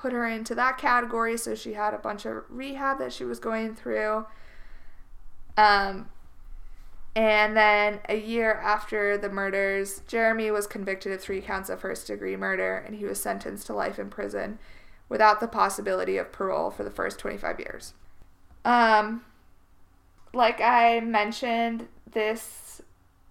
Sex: female